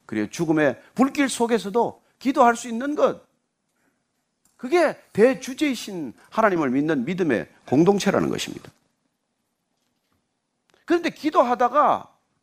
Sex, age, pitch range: male, 40-59, 190-270 Hz